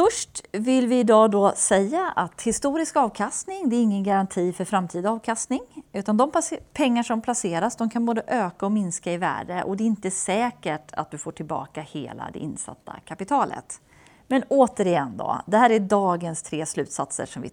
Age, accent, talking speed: 30-49, native, 180 wpm